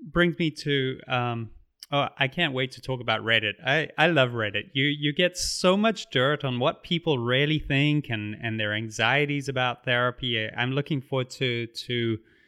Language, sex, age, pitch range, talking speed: English, male, 30-49, 125-175 Hz, 185 wpm